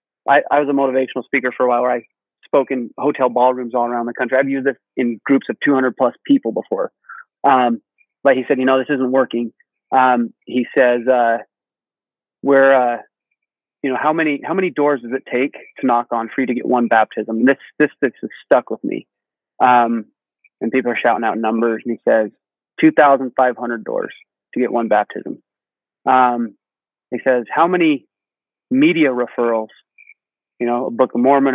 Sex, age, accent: male, 30-49, American